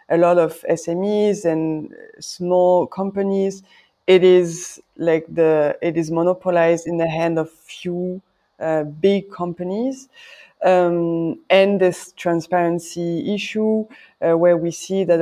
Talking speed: 125 wpm